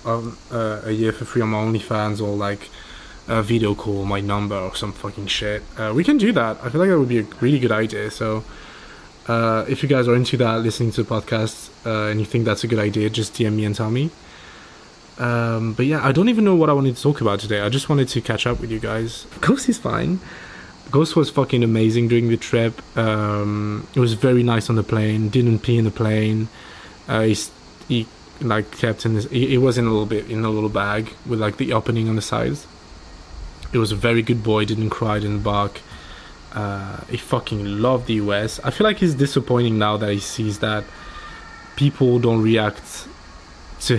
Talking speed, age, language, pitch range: 220 wpm, 20-39, English, 105-120 Hz